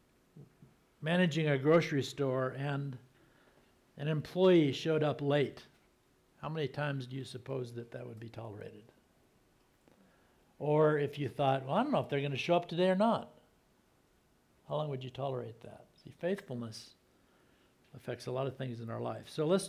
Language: English